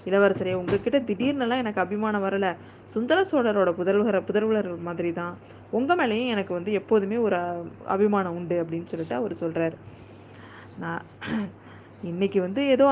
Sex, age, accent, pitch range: female, 20-39, native, 175-215 Hz